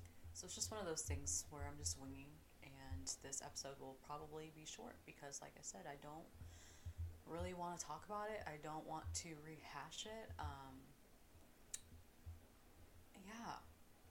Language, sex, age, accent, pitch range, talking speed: English, female, 30-49, American, 80-140 Hz, 160 wpm